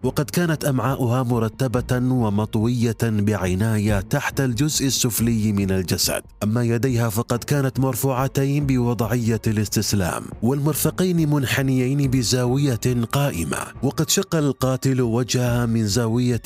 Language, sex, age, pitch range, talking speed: Arabic, male, 30-49, 110-135 Hz, 100 wpm